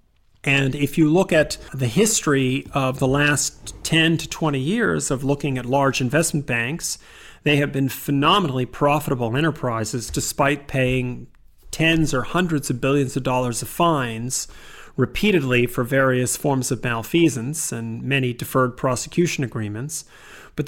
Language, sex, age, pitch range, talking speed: English, male, 40-59, 130-155 Hz, 140 wpm